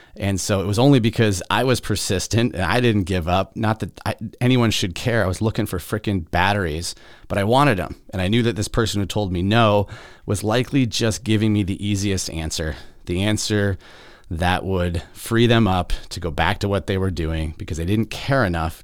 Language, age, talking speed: English, 30-49, 215 wpm